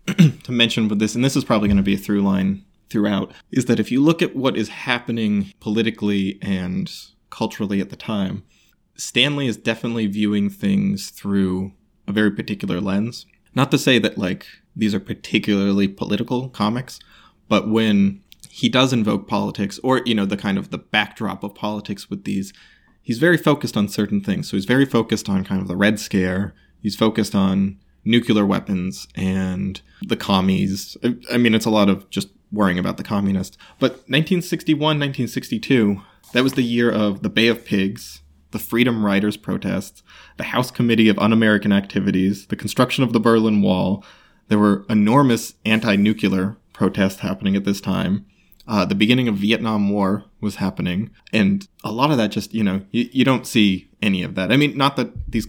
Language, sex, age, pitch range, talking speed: English, male, 20-39, 100-120 Hz, 180 wpm